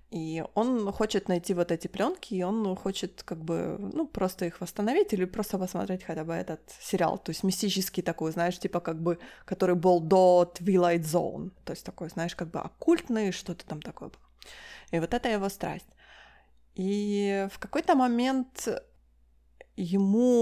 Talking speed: 170 wpm